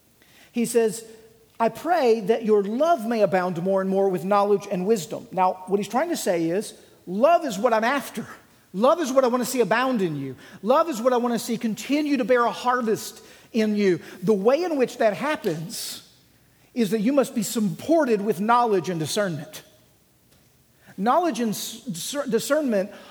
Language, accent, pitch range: English, American, 190-245 Hz